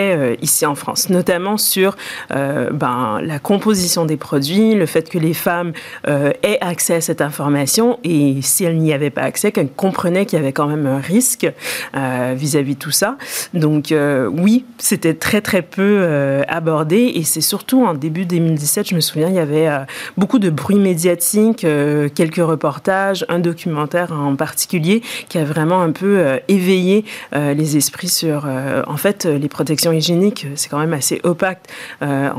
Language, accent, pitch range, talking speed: French, French, 145-190 Hz, 185 wpm